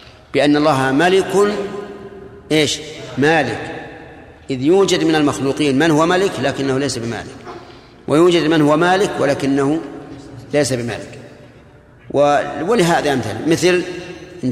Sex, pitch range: male, 135-160 Hz